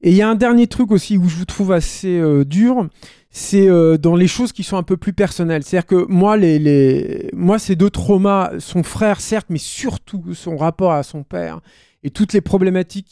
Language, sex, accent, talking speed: French, male, French, 225 wpm